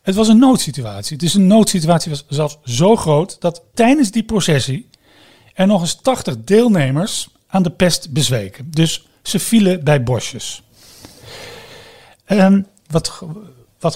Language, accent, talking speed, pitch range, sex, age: Dutch, Dutch, 140 wpm, 135-195 Hz, male, 40-59